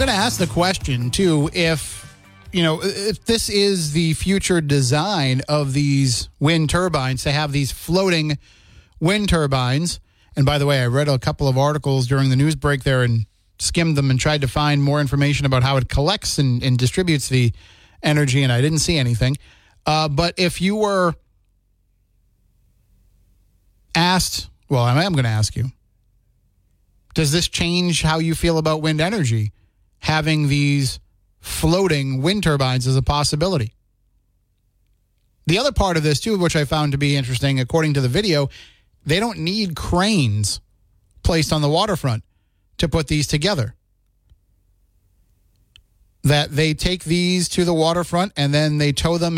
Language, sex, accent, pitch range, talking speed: English, male, American, 110-160 Hz, 165 wpm